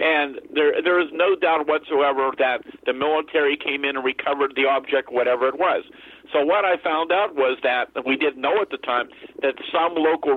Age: 50-69